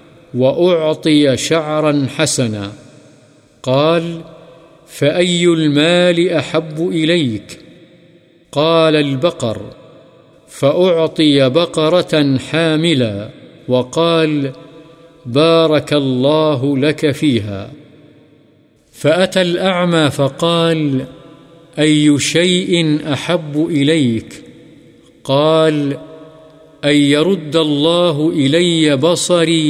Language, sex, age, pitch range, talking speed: Urdu, male, 50-69, 140-165 Hz, 65 wpm